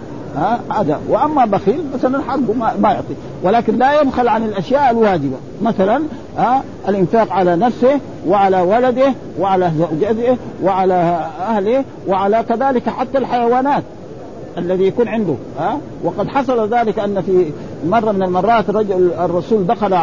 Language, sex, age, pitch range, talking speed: Arabic, male, 50-69, 185-235 Hz, 120 wpm